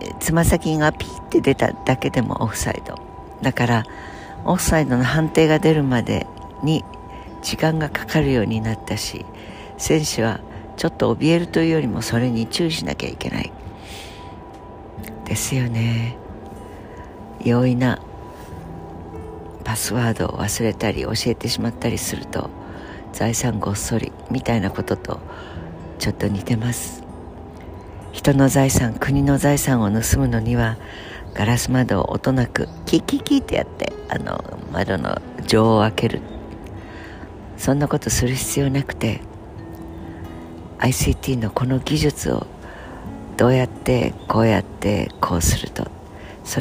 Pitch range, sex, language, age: 95-125 Hz, female, Japanese, 60-79